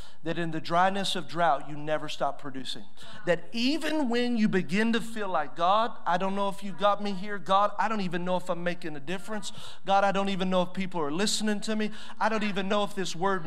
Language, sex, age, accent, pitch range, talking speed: English, male, 40-59, American, 185-230 Hz, 245 wpm